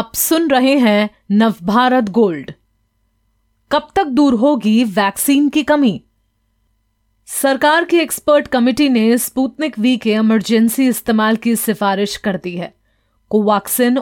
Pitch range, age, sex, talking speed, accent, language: 185-250 Hz, 30-49, female, 125 wpm, native, Hindi